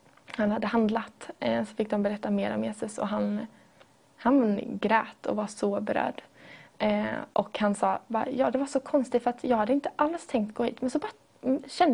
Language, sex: Swedish, female